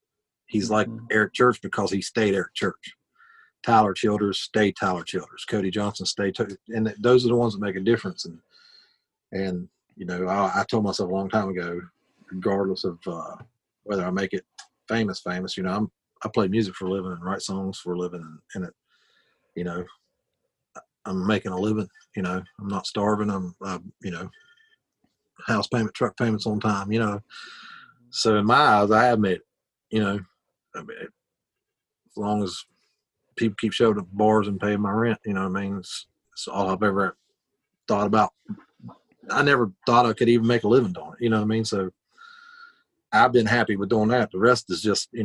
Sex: male